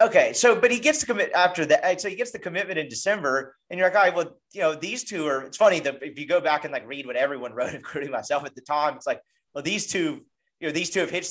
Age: 30-49